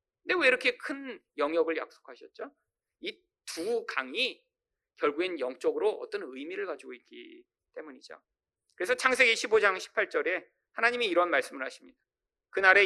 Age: 40-59